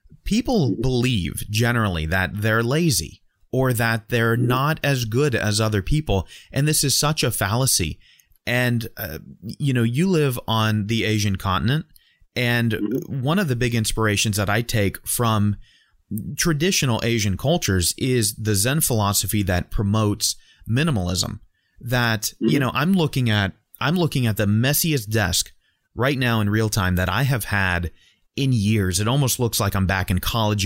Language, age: English, 30-49